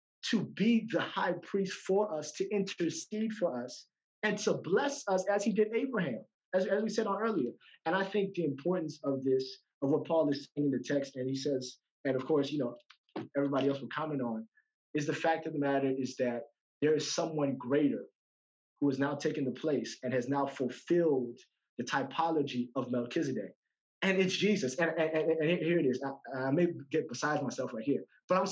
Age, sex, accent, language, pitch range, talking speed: 30-49, male, American, English, 150-210 Hz, 210 wpm